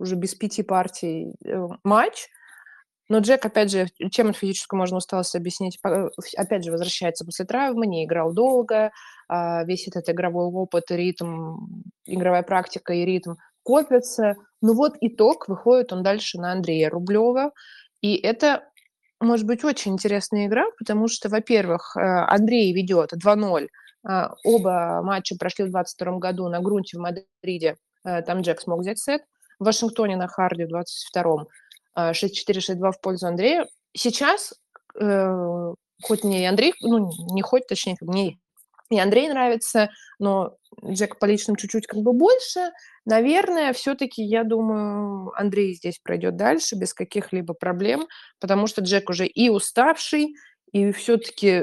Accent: native